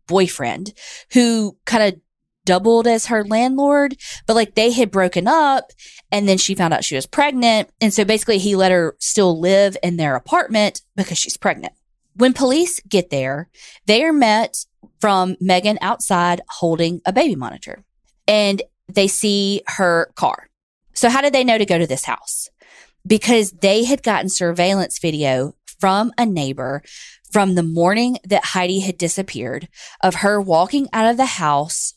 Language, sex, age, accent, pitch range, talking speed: English, female, 20-39, American, 170-225 Hz, 165 wpm